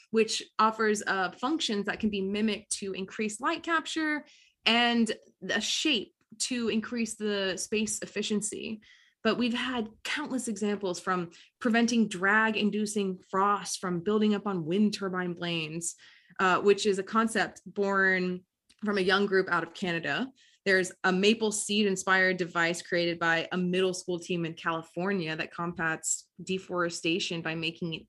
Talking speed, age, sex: 145 wpm, 20-39, female